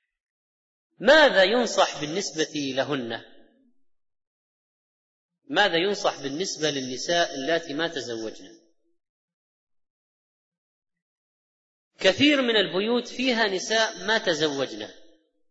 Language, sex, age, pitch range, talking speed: Arabic, female, 30-49, 170-220 Hz, 70 wpm